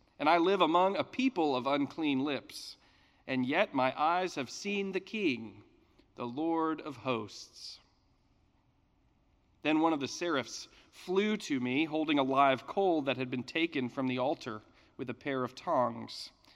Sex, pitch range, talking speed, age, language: male, 125-190 Hz, 165 wpm, 40-59, English